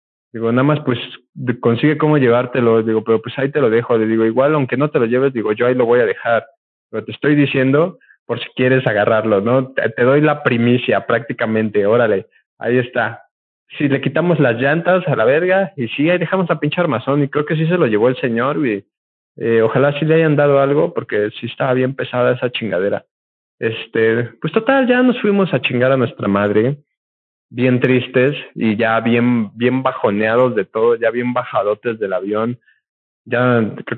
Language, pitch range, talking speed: Spanish, 110-140 Hz, 200 wpm